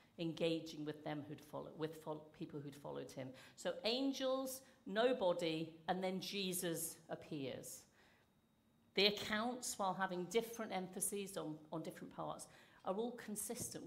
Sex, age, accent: female, 50-69, British